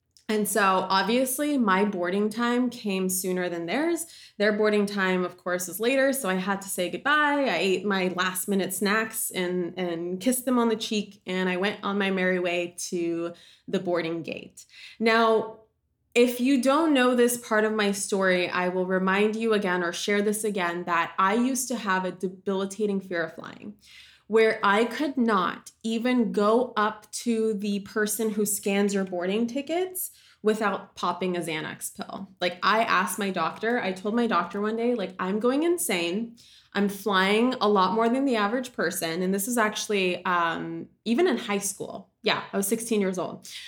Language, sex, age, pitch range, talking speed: English, female, 20-39, 185-225 Hz, 185 wpm